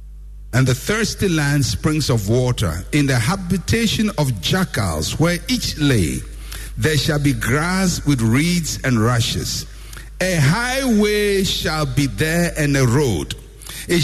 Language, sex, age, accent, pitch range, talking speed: English, male, 60-79, Nigerian, 115-185 Hz, 135 wpm